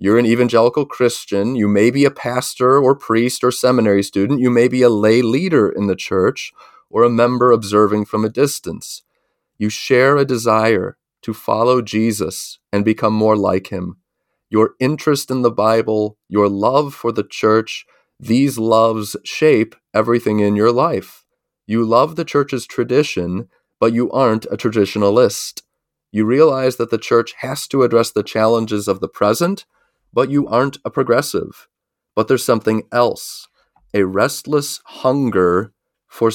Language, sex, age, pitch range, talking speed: English, male, 30-49, 105-125 Hz, 155 wpm